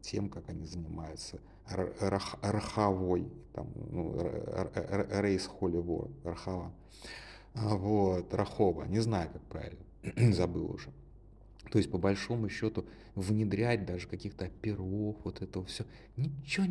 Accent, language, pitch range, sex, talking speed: native, Russian, 95-130 Hz, male, 115 wpm